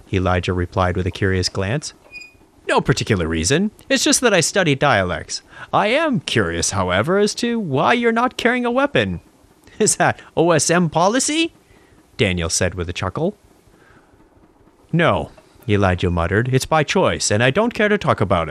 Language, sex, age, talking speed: English, male, 30-49, 160 wpm